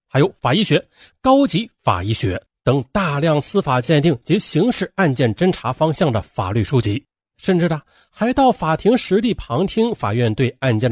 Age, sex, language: 30-49, male, Chinese